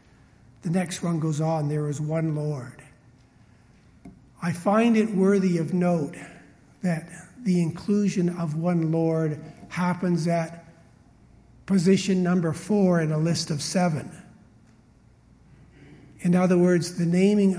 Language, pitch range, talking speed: English, 150-180 Hz, 125 wpm